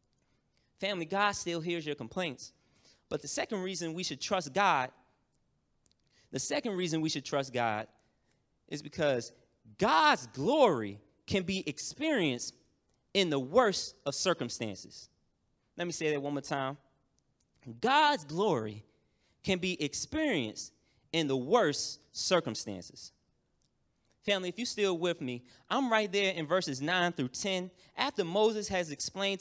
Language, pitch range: English, 145-190 Hz